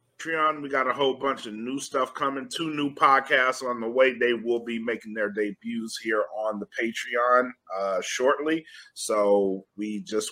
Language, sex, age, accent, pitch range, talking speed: English, male, 30-49, American, 105-140 Hz, 175 wpm